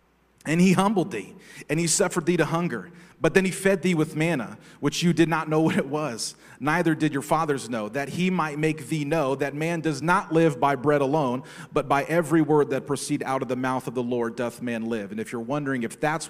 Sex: male